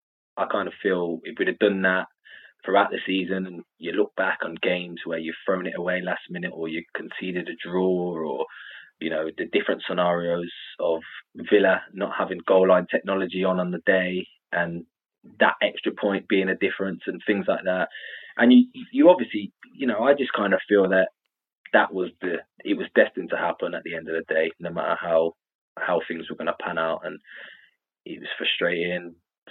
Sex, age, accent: male, 20-39, British